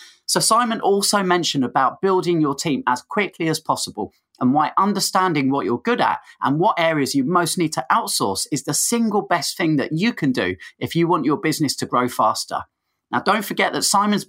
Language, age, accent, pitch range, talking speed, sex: English, 30-49, British, 130-185 Hz, 205 wpm, male